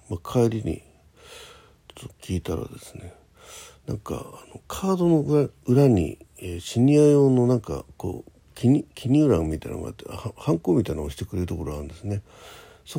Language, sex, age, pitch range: Japanese, male, 60-79, 80-120 Hz